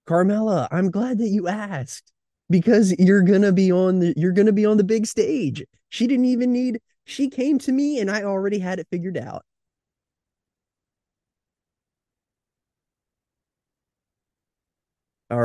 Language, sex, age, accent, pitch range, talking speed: English, male, 20-39, American, 110-150 Hz, 145 wpm